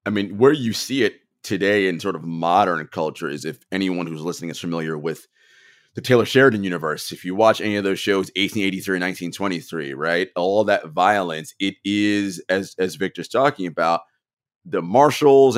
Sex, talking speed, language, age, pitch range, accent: male, 195 wpm, English, 30-49, 100-155 Hz, American